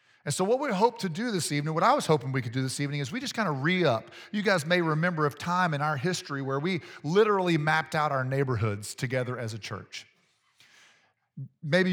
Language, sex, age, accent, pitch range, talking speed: English, male, 40-59, American, 130-160 Hz, 225 wpm